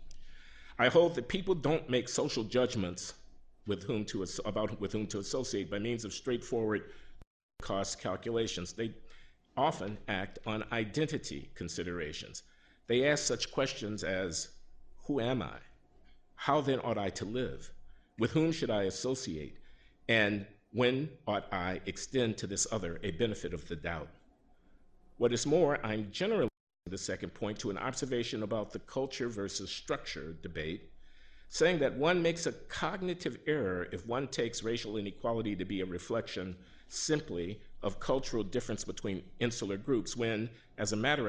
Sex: male